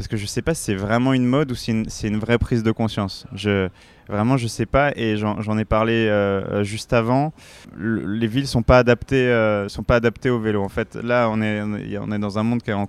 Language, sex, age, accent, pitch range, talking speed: French, male, 20-39, French, 100-120 Hz, 265 wpm